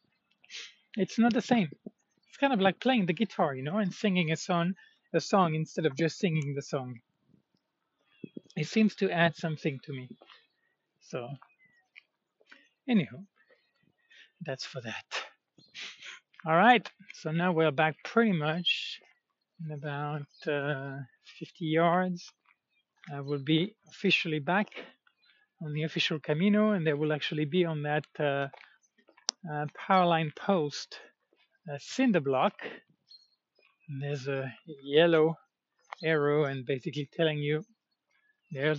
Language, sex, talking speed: English, male, 130 wpm